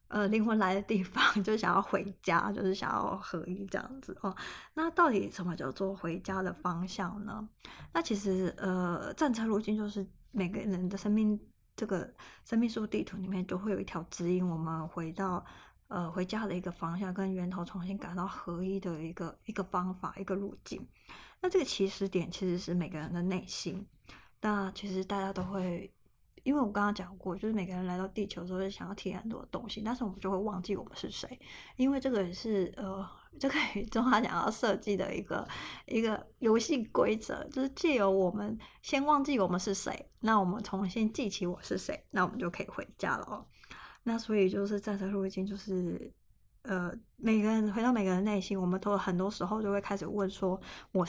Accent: native